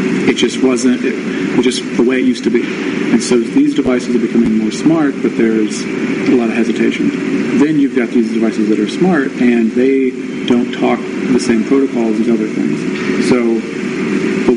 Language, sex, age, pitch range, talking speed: English, male, 40-59, 110-125 Hz, 195 wpm